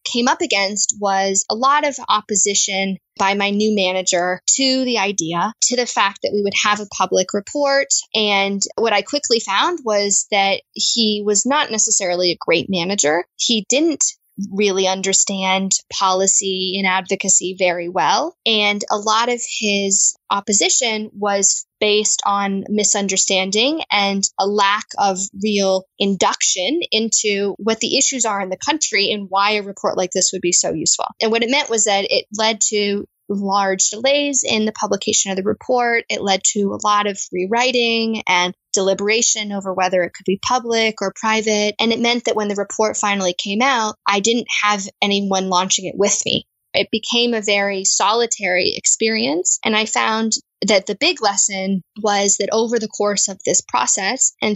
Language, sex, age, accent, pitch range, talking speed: English, female, 10-29, American, 195-225 Hz, 170 wpm